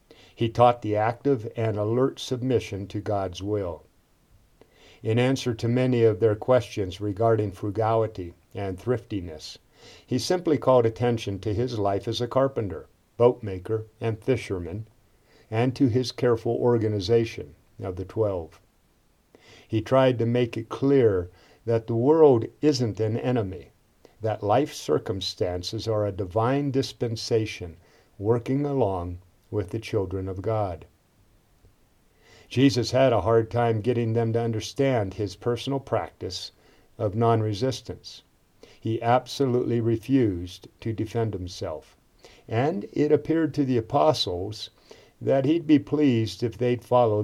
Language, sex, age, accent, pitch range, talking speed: English, male, 50-69, American, 105-125 Hz, 130 wpm